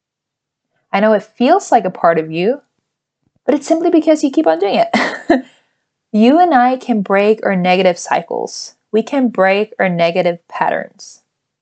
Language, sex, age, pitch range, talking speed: English, female, 20-39, 175-220 Hz, 165 wpm